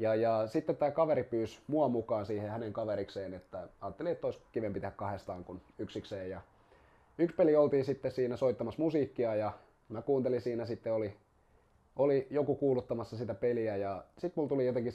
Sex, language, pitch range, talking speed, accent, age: male, Finnish, 100-125 Hz, 175 wpm, native, 20-39